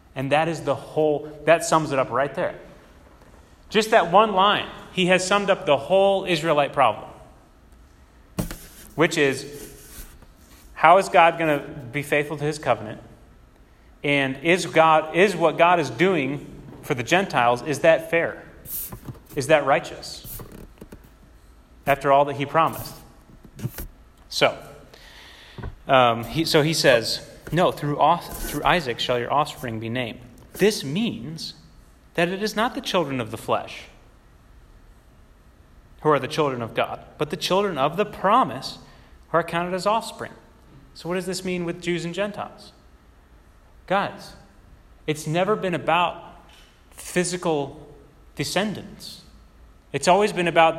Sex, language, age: male, English, 30-49